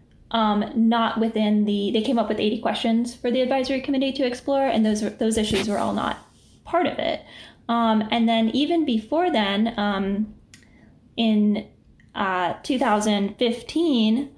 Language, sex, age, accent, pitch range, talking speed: English, female, 10-29, American, 210-230 Hz, 150 wpm